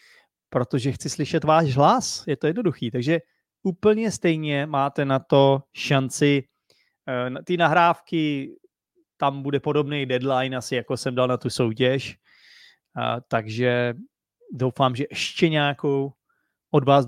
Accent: native